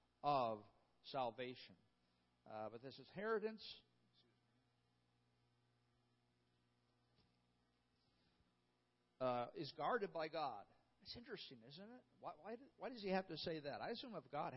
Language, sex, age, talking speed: English, male, 50-69, 115 wpm